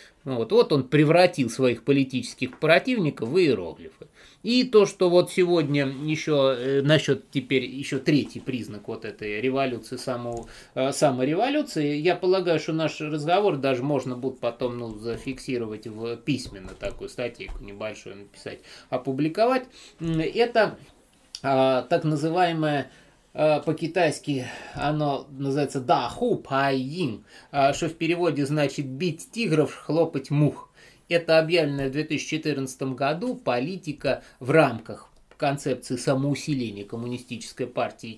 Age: 20-39